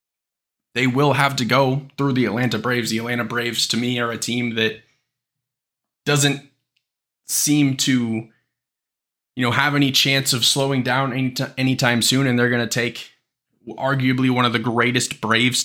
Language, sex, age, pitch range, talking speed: English, male, 20-39, 115-130 Hz, 170 wpm